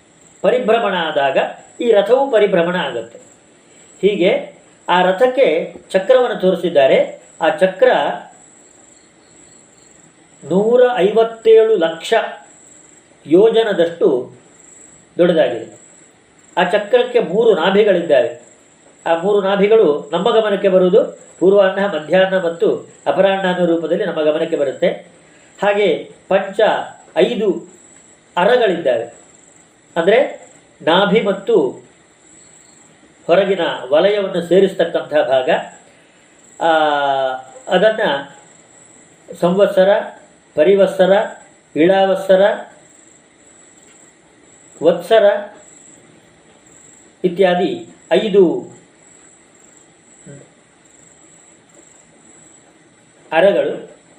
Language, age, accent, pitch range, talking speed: Kannada, 40-59, native, 175-225 Hz, 60 wpm